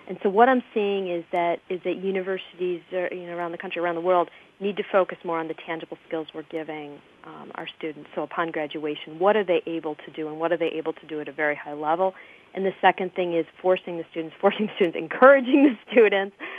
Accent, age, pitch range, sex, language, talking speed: American, 40-59, 160-195 Hz, female, English, 240 wpm